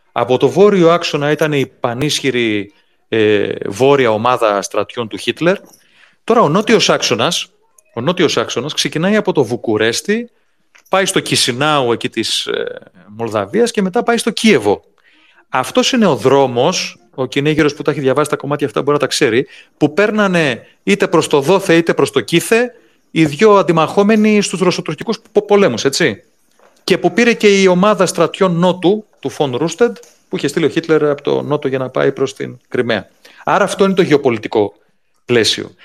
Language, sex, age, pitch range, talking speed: Greek, male, 30-49, 135-205 Hz, 170 wpm